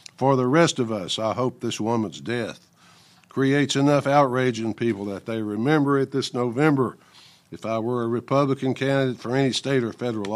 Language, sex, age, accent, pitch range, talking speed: English, male, 60-79, American, 110-140 Hz, 185 wpm